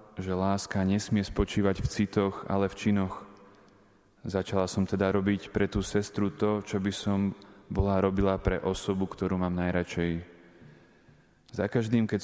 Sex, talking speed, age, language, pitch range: male, 145 wpm, 20-39, Slovak, 95-100 Hz